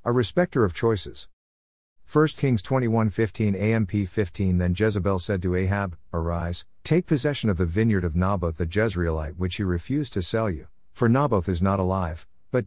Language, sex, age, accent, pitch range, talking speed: English, male, 50-69, American, 90-110 Hz, 180 wpm